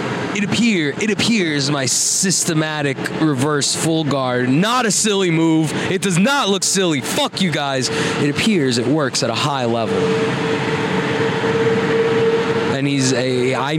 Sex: male